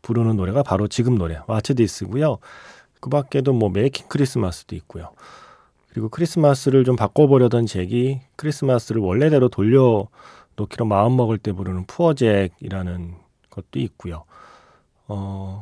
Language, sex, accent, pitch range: Korean, male, native, 100-140 Hz